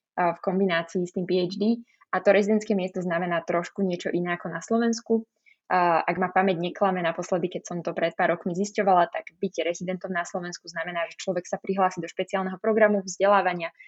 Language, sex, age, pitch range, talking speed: Slovak, female, 20-39, 175-210 Hz, 180 wpm